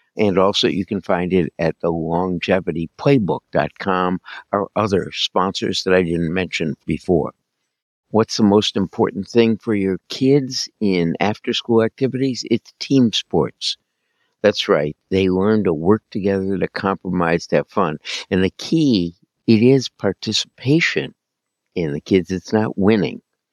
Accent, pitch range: American, 85-105 Hz